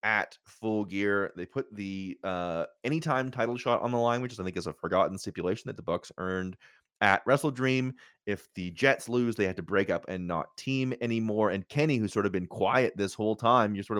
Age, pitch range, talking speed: 30-49, 100-135 Hz, 225 wpm